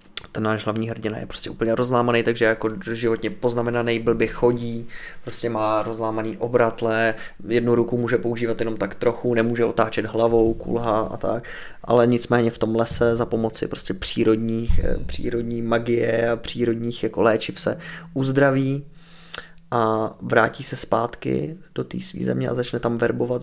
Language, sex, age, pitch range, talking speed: Czech, male, 20-39, 110-120 Hz, 145 wpm